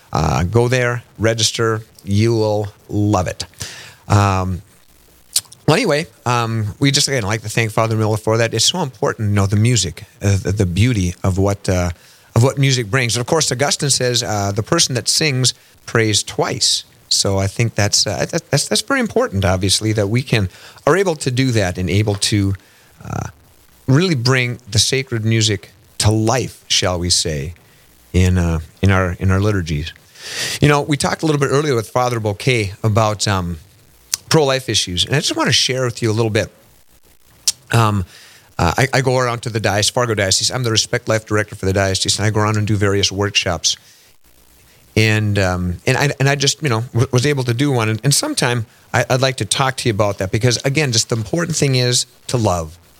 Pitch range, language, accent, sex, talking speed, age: 100-125 Hz, English, American, male, 205 wpm, 40-59